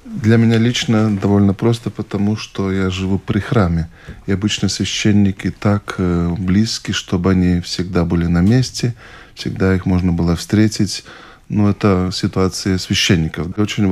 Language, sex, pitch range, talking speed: Russian, male, 95-110 Hz, 140 wpm